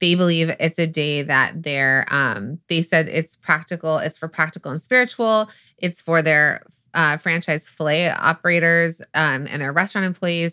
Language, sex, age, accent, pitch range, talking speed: English, female, 30-49, American, 160-205 Hz, 165 wpm